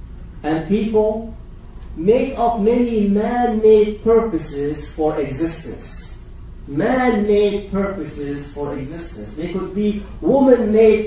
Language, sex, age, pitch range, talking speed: English, male, 30-49, 160-215 Hz, 90 wpm